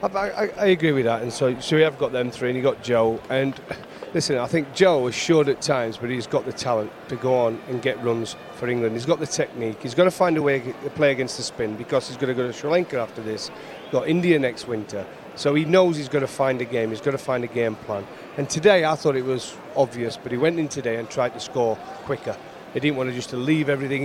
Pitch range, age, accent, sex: 125-160 Hz, 40-59, British, male